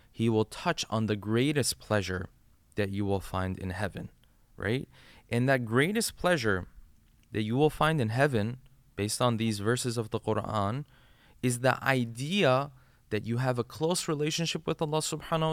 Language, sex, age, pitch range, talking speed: English, male, 20-39, 105-140 Hz, 165 wpm